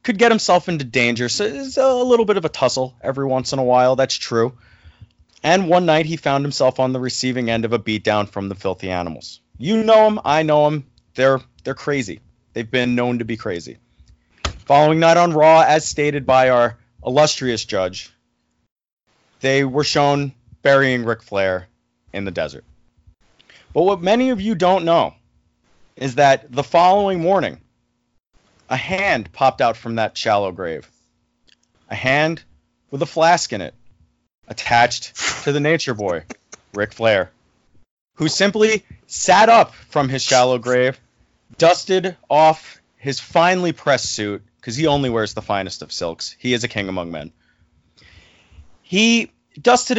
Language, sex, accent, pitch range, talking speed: English, male, American, 115-160 Hz, 160 wpm